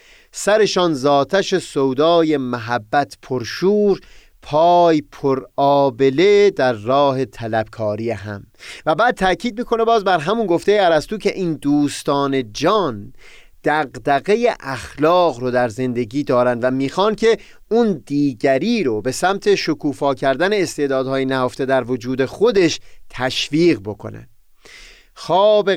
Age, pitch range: 30-49, 125-175 Hz